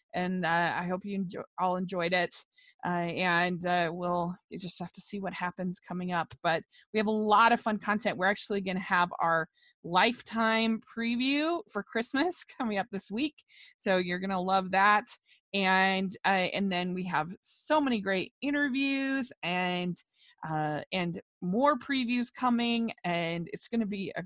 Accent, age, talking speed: American, 20-39, 180 wpm